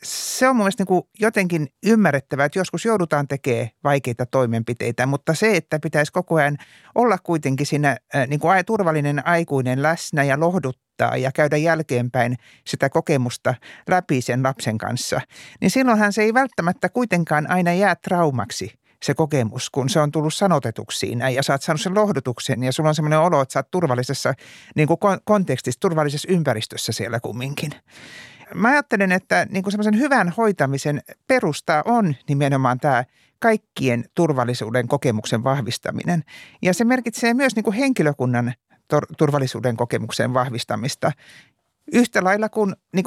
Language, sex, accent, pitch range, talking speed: Finnish, male, native, 130-195 Hz, 140 wpm